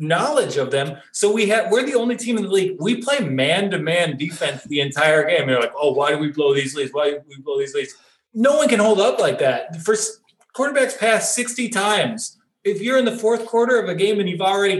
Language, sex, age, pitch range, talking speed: English, male, 30-49, 155-215 Hz, 235 wpm